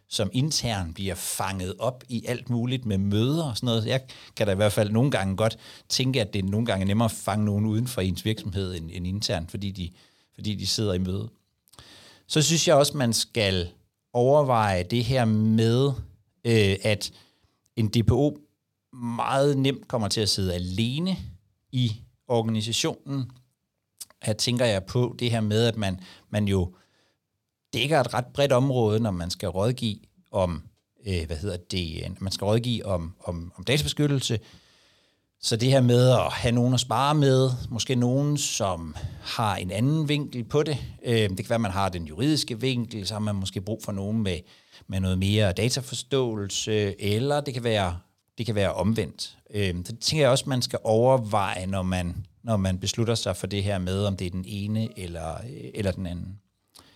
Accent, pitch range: native, 95-125 Hz